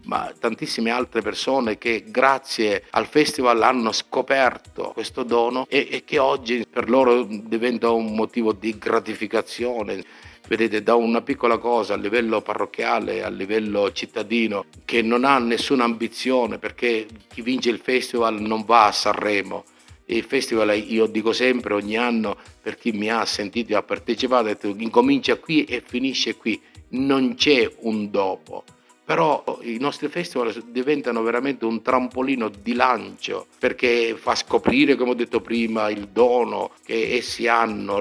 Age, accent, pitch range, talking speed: 50-69, native, 110-125 Hz, 150 wpm